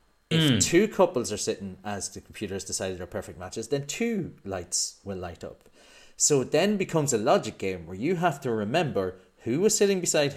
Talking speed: 205 wpm